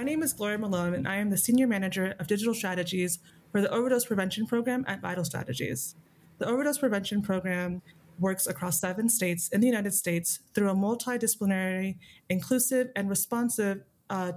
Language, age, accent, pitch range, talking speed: English, 20-39, American, 175-210 Hz, 170 wpm